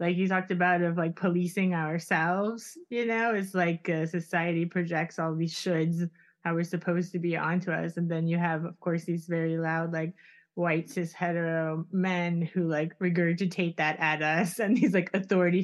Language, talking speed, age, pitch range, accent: English, 190 wpm, 20-39, 170-185 Hz, American